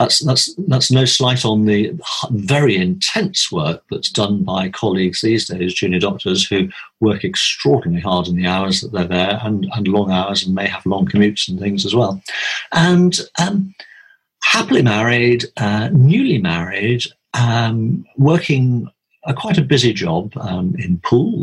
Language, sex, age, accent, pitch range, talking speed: English, male, 50-69, British, 100-155 Hz, 160 wpm